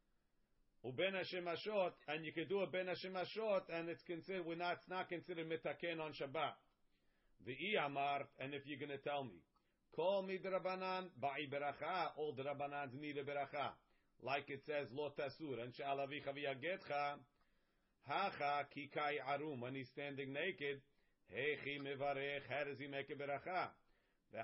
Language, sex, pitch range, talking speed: English, male, 140-175 Hz, 150 wpm